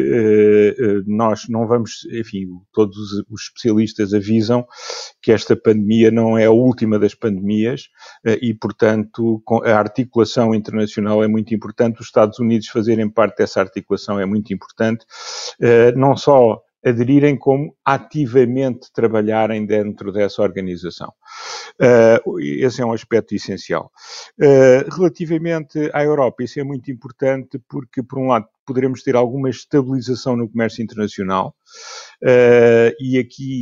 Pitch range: 110-130 Hz